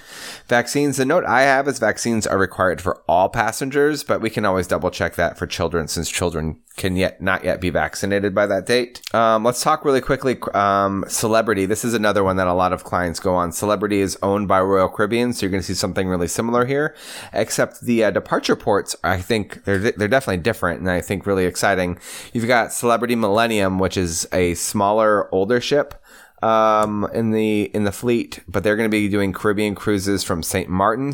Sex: male